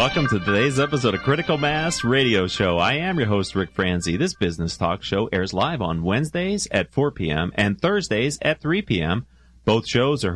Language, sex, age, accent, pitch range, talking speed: English, male, 40-59, American, 95-155 Hz, 195 wpm